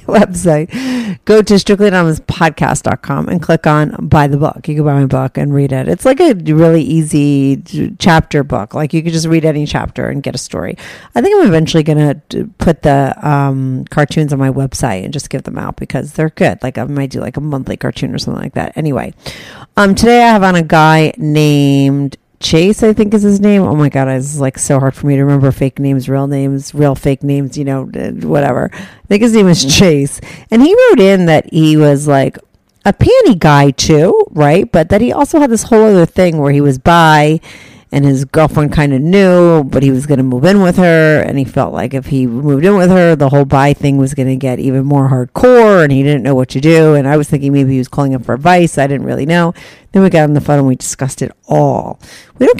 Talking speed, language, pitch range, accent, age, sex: 235 wpm, English, 140-175 Hz, American, 40-59, female